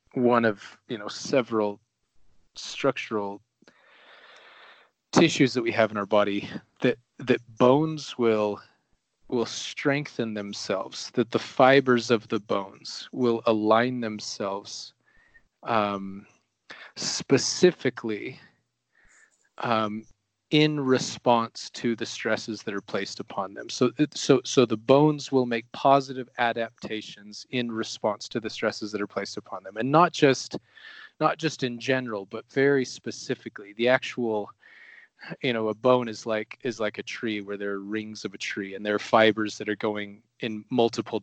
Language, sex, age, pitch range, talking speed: English, male, 30-49, 110-130 Hz, 145 wpm